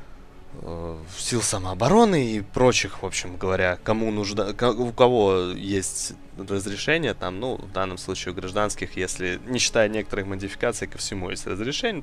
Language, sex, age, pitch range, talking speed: Russian, male, 20-39, 95-120 Hz, 145 wpm